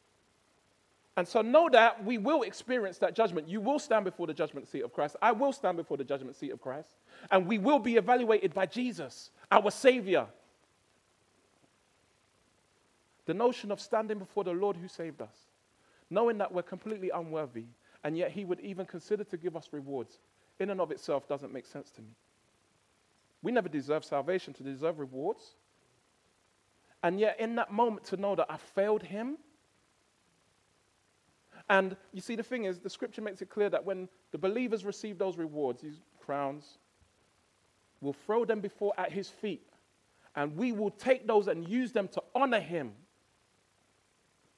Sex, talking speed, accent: male, 170 wpm, British